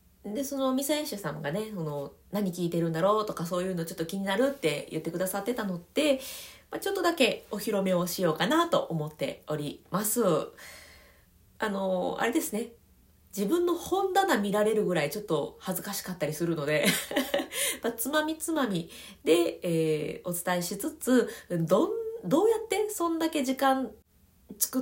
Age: 20-39